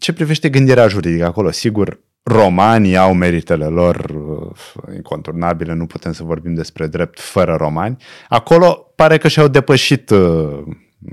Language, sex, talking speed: Romanian, male, 135 wpm